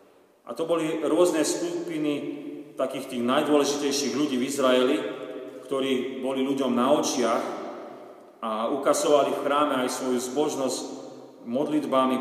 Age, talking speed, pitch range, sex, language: 40-59, 120 wpm, 130-180 Hz, male, Slovak